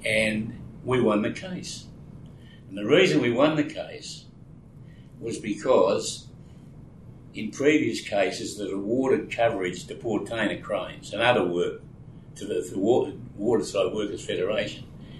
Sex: male